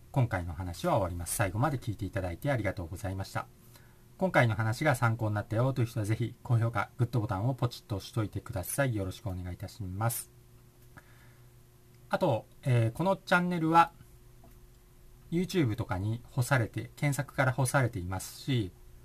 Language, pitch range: Japanese, 100-125 Hz